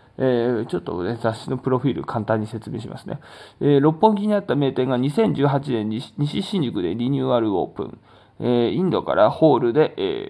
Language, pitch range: Japanese, 115-150 Hz